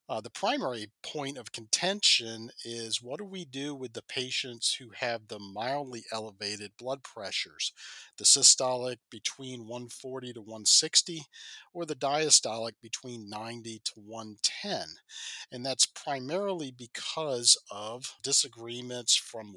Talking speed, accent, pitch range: 125 wpm, American, 110-135 Hz